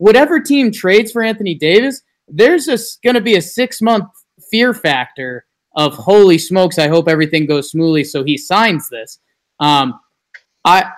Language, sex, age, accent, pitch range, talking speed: English, male, 20-39, American, 145-185 Hz, 155 wpm